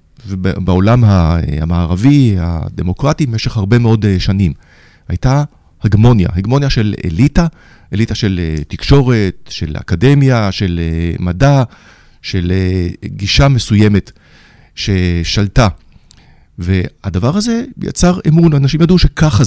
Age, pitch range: 40-59, 95-130 Hz